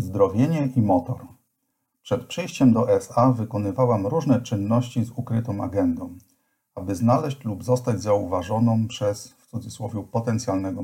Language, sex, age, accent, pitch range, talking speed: English, male, 50-69, Polish, 105-125 Hz, 120 wpm